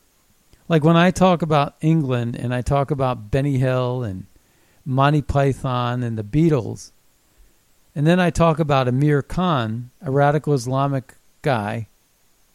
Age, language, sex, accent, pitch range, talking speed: 50-69, English, male, American, 130-175 Hz, 140 wpm